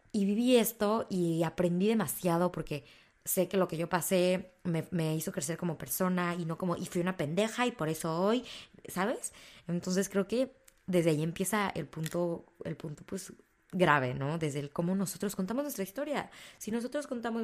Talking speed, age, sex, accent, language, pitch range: 185 wpm, 20-39, female, Mexican, Spanish, 160-190 Hz